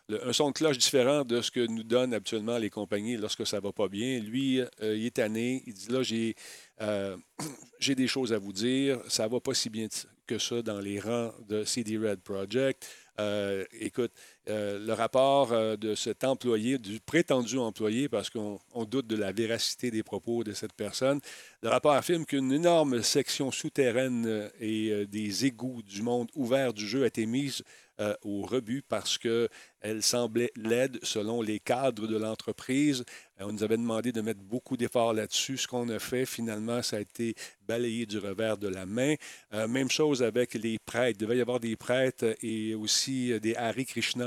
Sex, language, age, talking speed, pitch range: male, French, 40-59, 195 wpm, 110-130 Hz